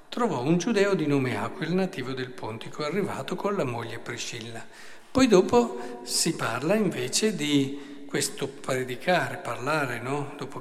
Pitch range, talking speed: 140-205 Hz, 135 wpm